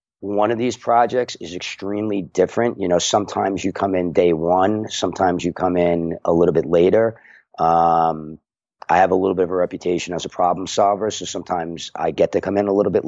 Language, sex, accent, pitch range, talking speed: English, male, American, 90-105 Hz, 210 wpm